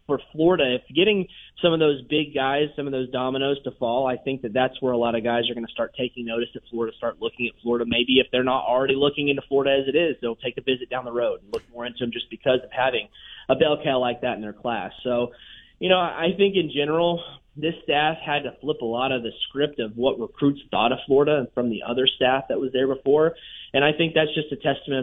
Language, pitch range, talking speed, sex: English, 125-150 Hz, 265 wpm, male